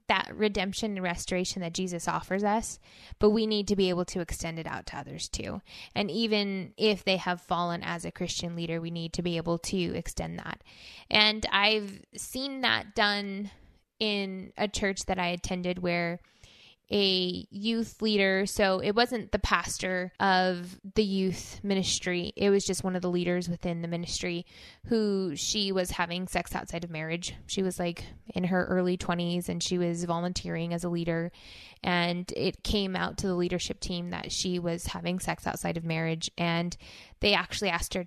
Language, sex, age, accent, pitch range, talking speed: English, female, 10-29, American, 175-205 Hz, 185 wpm